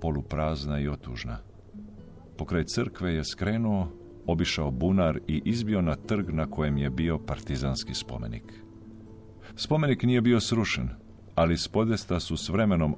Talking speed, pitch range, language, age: 130 wpm, 75-100 Hz, Croatian, 50-69